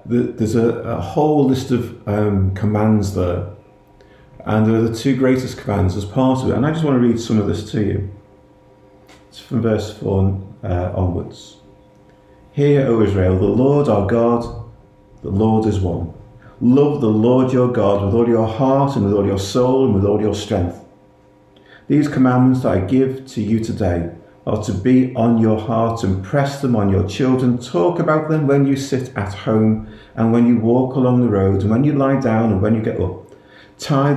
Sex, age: male, 50-69